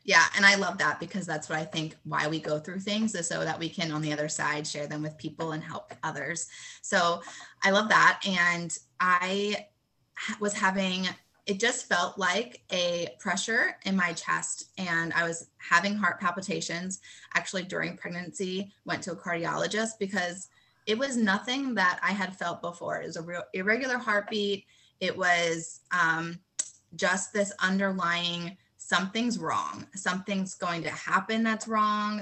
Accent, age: American, 20-39